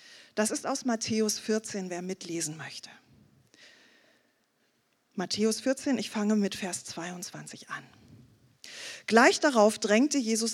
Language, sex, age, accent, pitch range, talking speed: German, female, 40-59, German, 210-260 Hz, 115 wpm